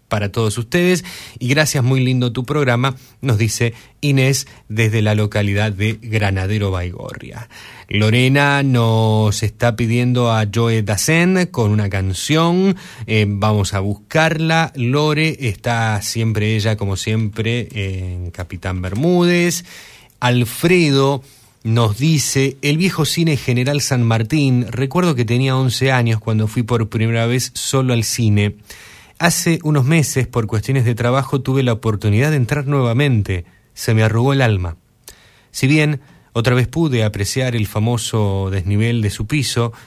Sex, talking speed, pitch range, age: male, 140 wpm, 105-130 Hz, 30-49